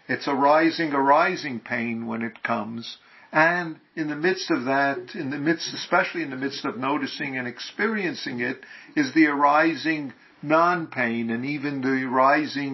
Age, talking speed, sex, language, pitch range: 50-69, 165 wpm, male, English, 135-170 Hz